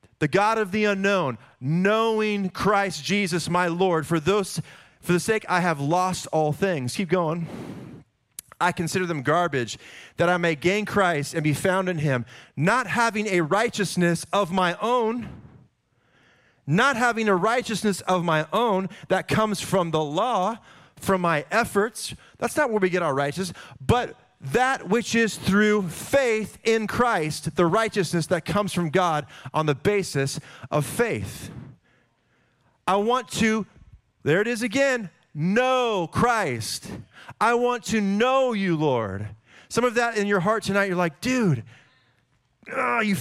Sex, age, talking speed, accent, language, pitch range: male, 30-49, 155 wpm, American, English, 160-230 Hz